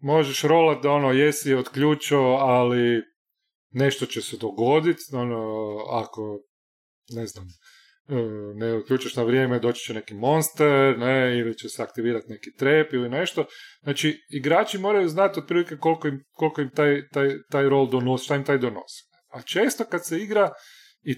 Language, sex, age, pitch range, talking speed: Croatian, male, 30-49, 125-160 Hz, 160 wpm